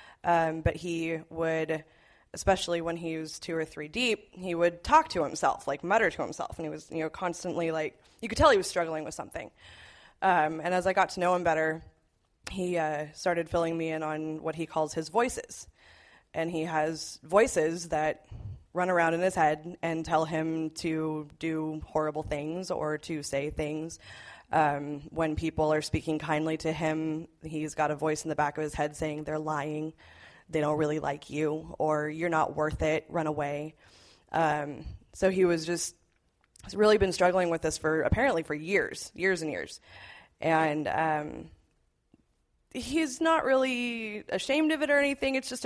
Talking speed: 185 wpm